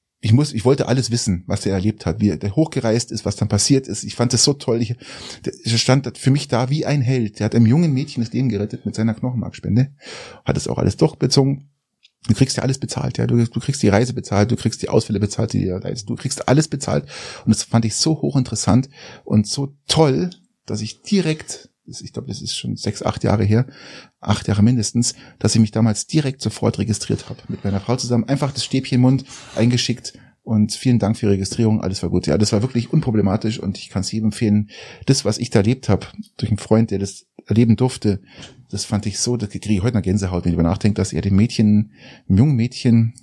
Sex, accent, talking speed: male, German, 230 wpm